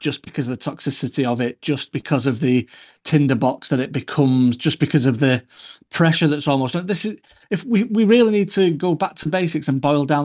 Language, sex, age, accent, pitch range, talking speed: English, male, 30-49, British, 135-160 Hz, 225 wpm